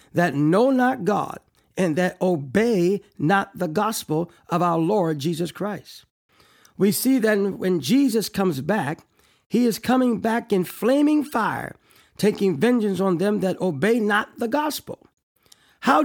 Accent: American